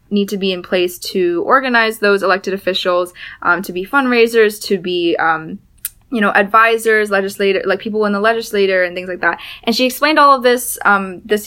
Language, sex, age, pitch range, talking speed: English, female, 20-39, 185-225 Hz, 200 wpm